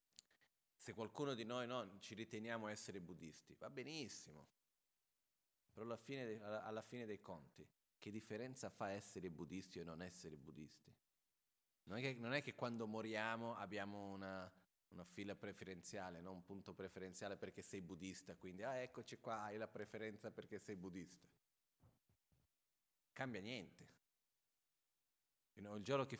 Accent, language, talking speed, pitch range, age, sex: native, Italian, 135 wpm, 90-110 Hz, 30-49, male